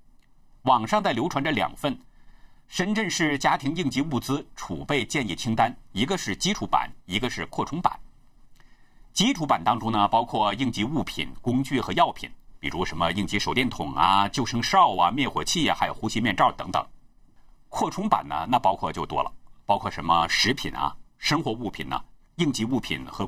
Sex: male